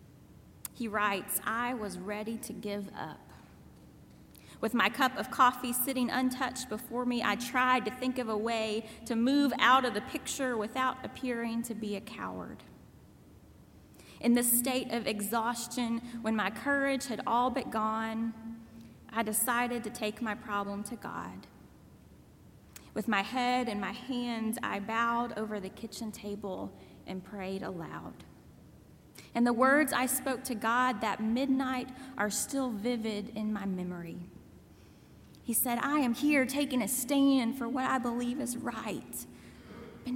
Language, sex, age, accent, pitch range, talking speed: English, female, 30-49, American, 215-260 Hz, 150 wpm